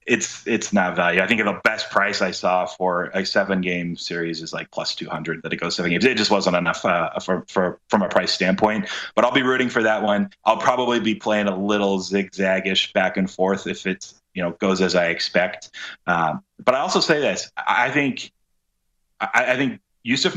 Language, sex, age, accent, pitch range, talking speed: English, male, 30-49, American, 95-110 Hz, 220 wpm